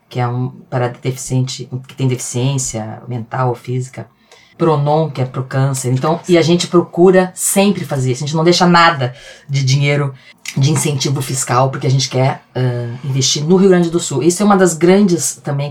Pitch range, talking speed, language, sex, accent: 130-165 Hz, 195 wpm, Portuguese, female, Brazilian